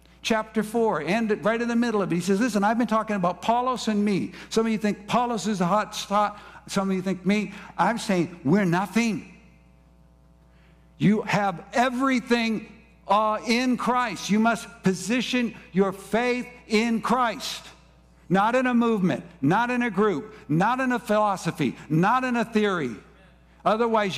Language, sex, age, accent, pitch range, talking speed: English, male, 60-79, American, 185-230 Hz, 165 wpm